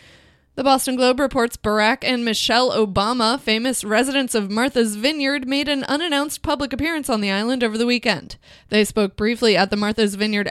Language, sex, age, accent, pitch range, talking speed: English, female, 20-39, American, 210-245 Hz, 175 wpm